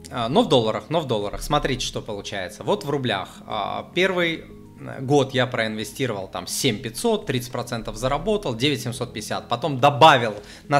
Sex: male